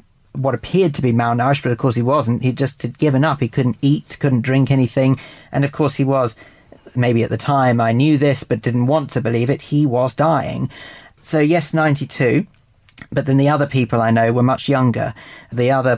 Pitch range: 115-140 Hz